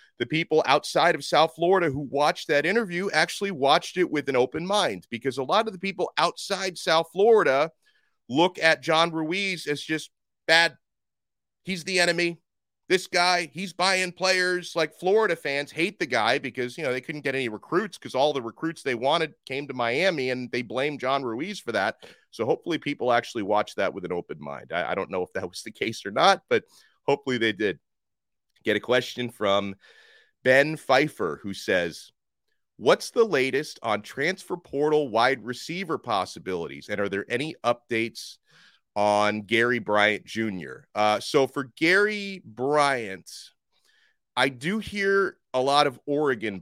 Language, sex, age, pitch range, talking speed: English, male, 30-49, 120-175 Hz, 170 wpm